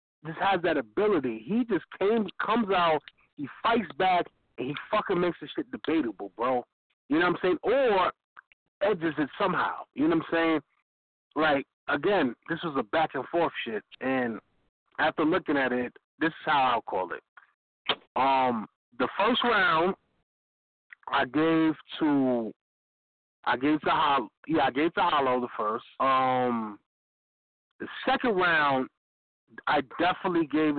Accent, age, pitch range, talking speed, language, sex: American, 30-49, 115-170 Hz, 155 wpm, English, male